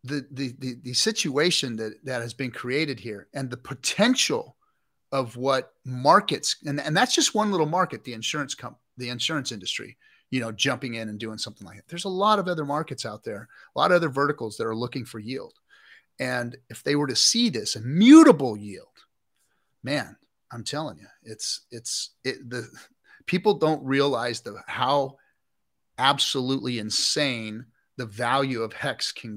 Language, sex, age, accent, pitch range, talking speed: English, male, 30-49, American, 120-145 Hz, 180 wpm